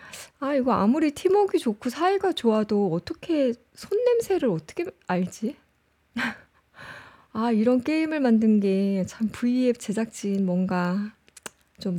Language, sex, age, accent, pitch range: Korean, female, 20-39, native, 195-265 Hz